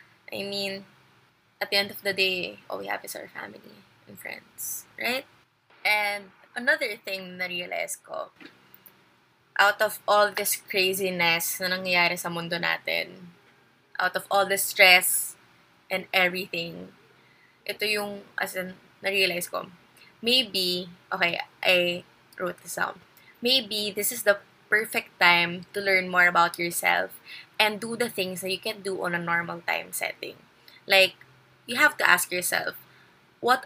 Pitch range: 180-205 Hz